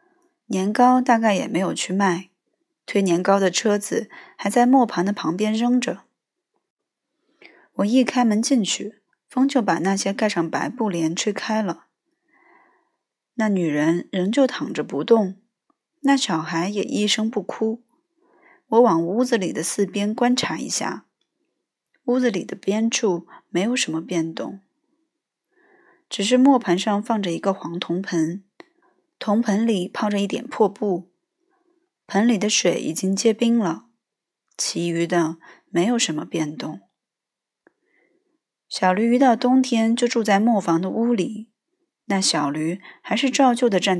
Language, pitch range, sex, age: Chinese, 185-255 Hz, female, 20-39